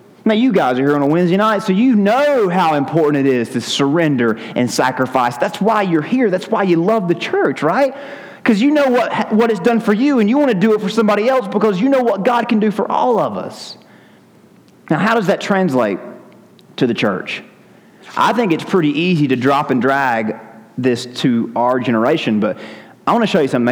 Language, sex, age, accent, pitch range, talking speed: English, male, 30-49, American, 135-205 Hz, 225 wpm